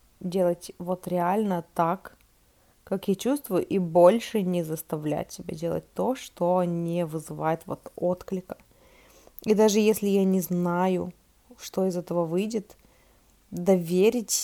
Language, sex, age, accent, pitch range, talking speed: Russian, female, 20-39, native, 170-200 Hz, 125 wpm